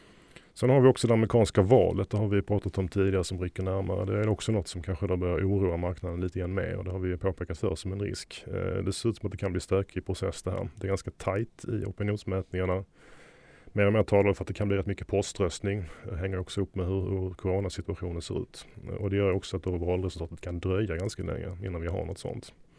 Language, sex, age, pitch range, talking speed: Swedish, male, 30-49, 95-105 Hz, 250 wpm